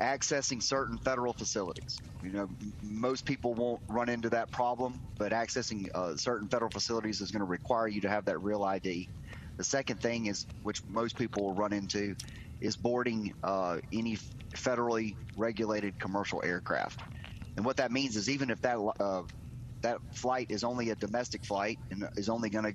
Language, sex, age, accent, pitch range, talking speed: English, male, 30-49, American, 105-120 Hz, 175 wpm